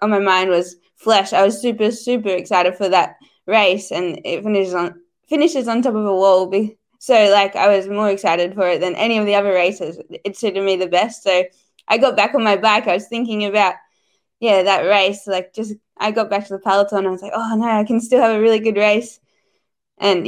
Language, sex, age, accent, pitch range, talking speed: English, female, 20-39, Australian, 185-215 Hz, 235 wpm